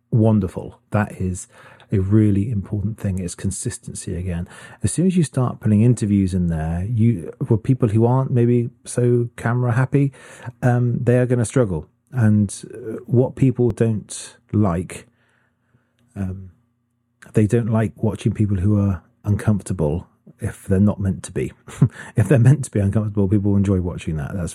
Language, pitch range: English, 95-120 Hz